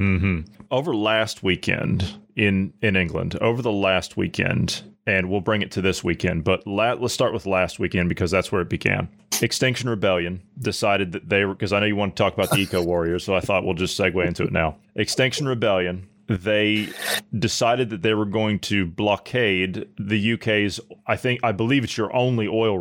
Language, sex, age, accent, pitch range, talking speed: English, male, 30-49, American, 95-120 Hz, 200 wpm